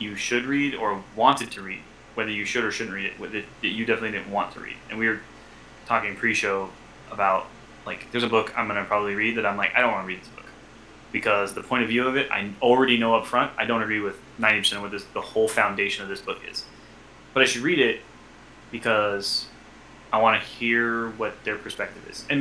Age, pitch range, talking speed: 20-39, 100-115 Hz, 240 wpm